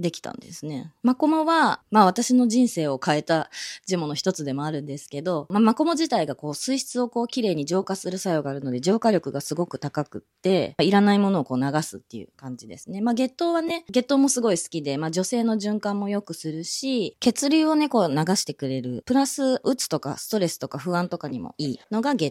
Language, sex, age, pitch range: Japanese, female, 20-39, 155-240 Hz